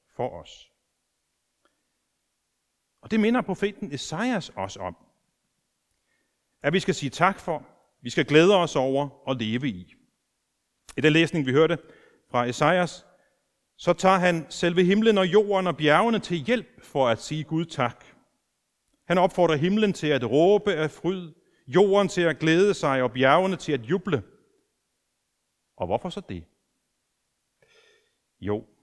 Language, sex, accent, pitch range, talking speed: Danish, male, native, 130-180 Hz, 145 wpm